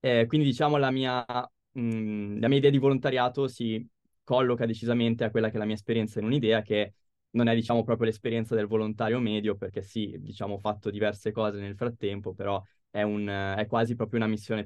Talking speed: 200 wpm